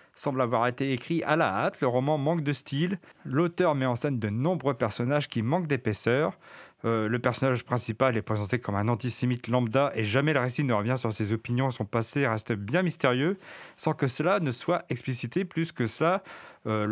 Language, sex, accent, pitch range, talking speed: French, male, French, 120-165 Hz, 200 wpm